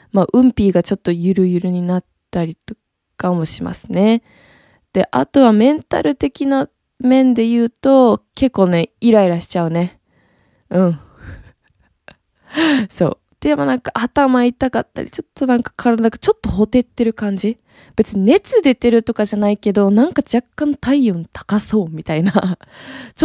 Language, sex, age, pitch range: Japanese, female, 20-39, 175-240 Hz